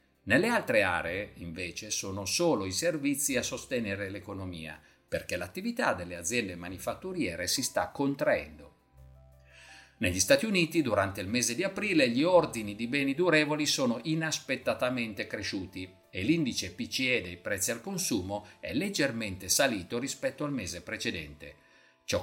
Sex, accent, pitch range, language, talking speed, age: male, native, 95-140 Hz, Italian, 135 wpm, 50-69